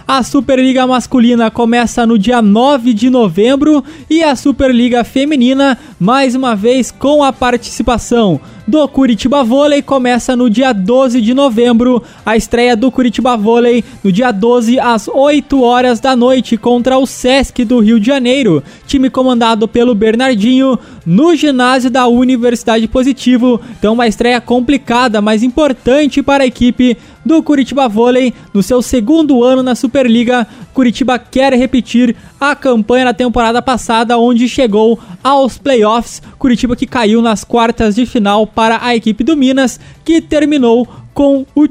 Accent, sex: Brazilian, male